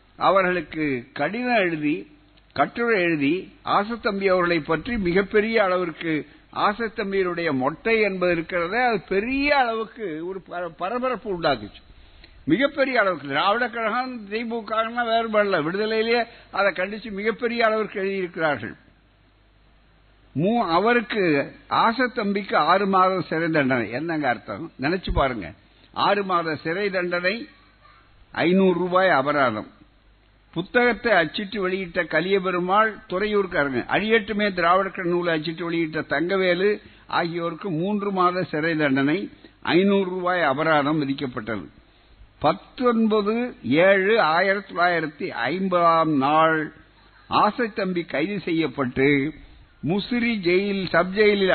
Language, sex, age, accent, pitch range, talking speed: Tamil, male, 60-79, native, 160-215 Hz, 95 wpm